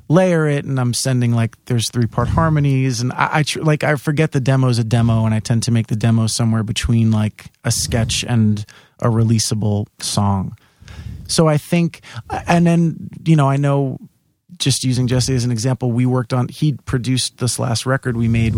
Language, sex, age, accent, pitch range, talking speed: English, male, 30-49, American, 110-130 Hz, 200 wpm